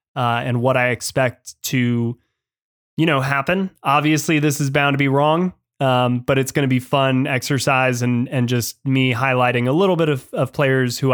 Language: English